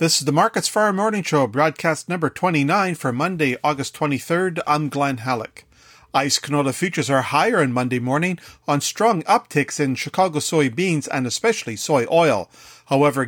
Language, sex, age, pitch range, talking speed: English, male, 40-59, 135-170 Hz, 165 wpm